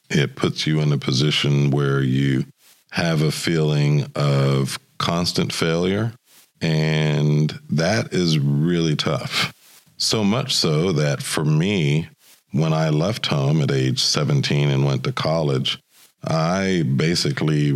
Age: 50-69